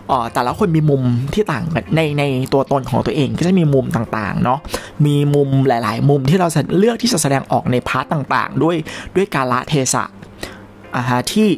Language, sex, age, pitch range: Thai, male, 20-39, 120-170 Hz